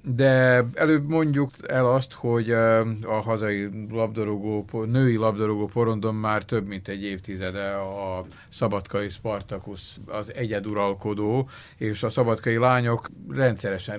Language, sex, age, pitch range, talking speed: Hungarian, male, 50-69, 100-120 Hz, 115 wpm